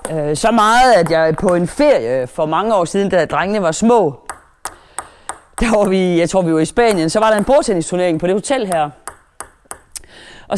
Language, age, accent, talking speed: Danish, 30-49, native, 195 wpm